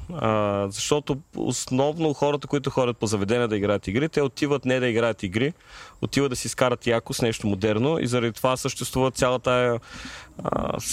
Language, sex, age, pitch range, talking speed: Bulgarian, male, 30-49, 115-145 Hz, 165 wpm